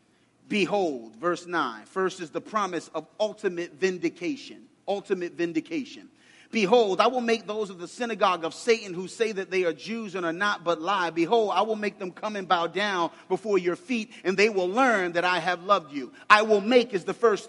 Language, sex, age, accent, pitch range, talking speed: English, male, 30-49, American, 195-270 Hz, 205 wpm